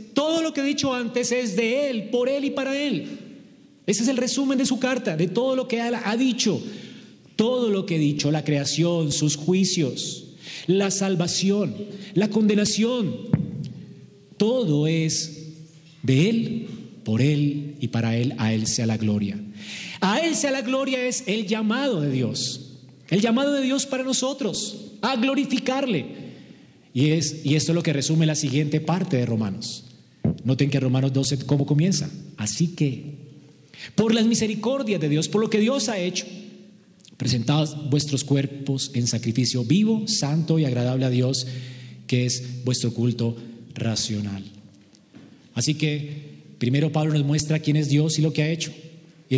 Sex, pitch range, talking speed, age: male, 135-215 Hz, 165 wpm, 40-59